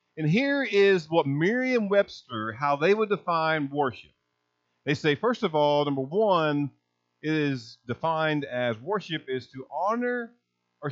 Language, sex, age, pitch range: English, male, 50-69, 95-160 Hz